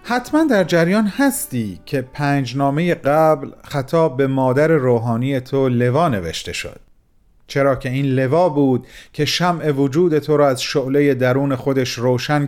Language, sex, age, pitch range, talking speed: Persian, male, 40-59, 130-160 Hz, 145 wpm